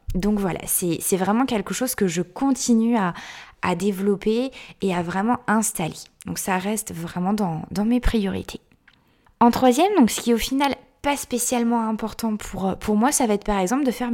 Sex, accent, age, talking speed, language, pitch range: female, French, 20-39, 195 wpm, French, 200-245 Hz